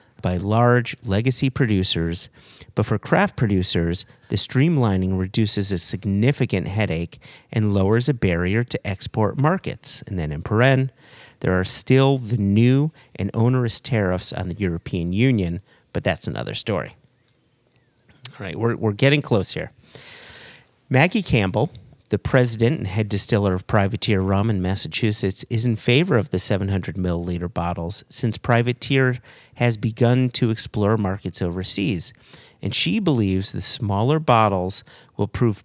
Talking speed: 140 wpm